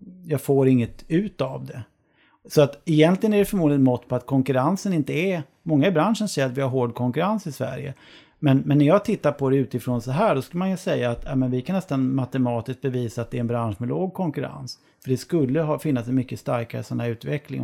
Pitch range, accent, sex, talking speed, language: 125-160 Hz, native, male, 240 wpm, Swedish